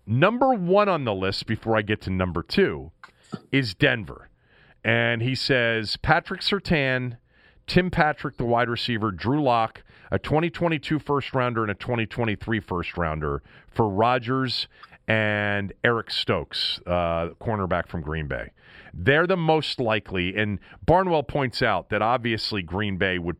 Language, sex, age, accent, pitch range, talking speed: English, male, 40-59, American, 95-140 Hz, 140 wpm